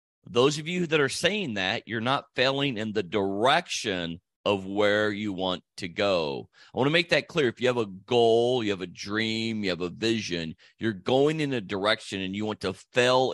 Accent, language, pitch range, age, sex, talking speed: American, English, 100-125 Hz, 40-59, male, 215 wpm